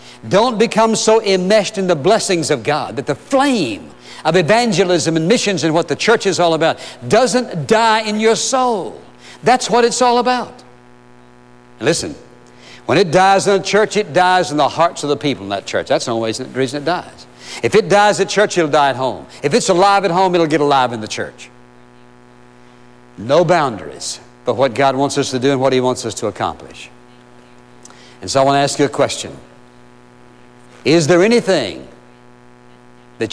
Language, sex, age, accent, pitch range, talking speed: English, male, 60-79, American, 110-160 Hz, 190 wpm